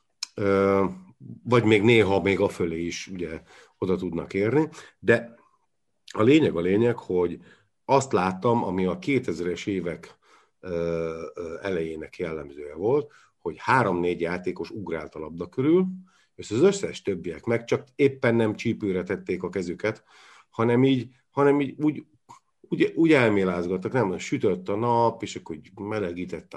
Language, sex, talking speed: Hungarian, male, 135 wpm